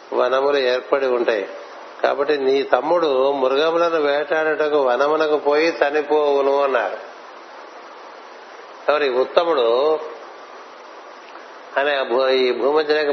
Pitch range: 135-160 Hz